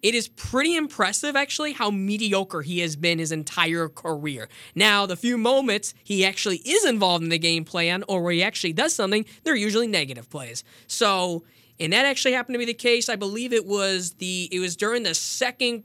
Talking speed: 205 wpm